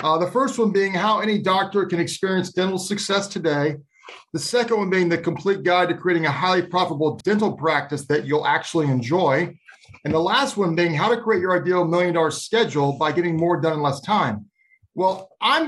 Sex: male